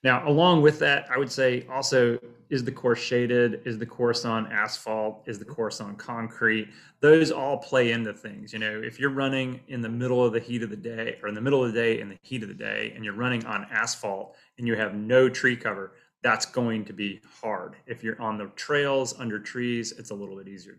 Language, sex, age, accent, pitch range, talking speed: English, male, 30-49, American, 115-135 Hz, 235 wpm